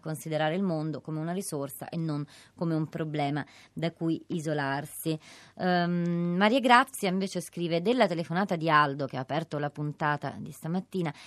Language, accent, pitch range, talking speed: Italian, native, 150-180 Hz, 160 wpm